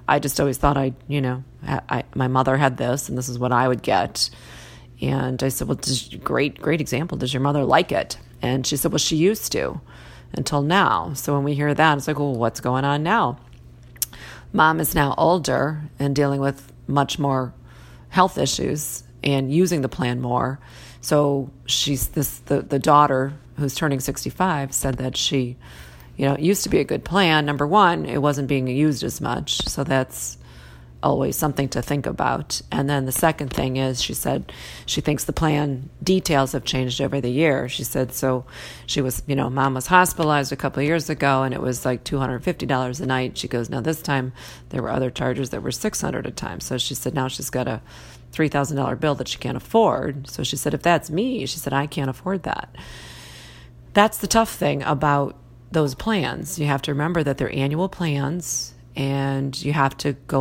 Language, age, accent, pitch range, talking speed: English, 40-59, American, 125-145 Hz, 205 wpm